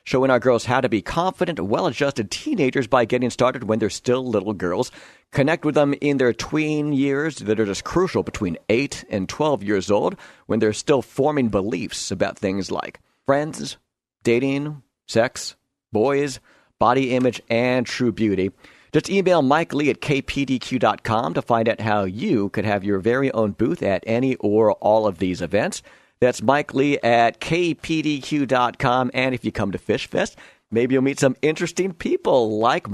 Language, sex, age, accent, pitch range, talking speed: English, male, 50-69, American, 110-140 Hz, 175 wpm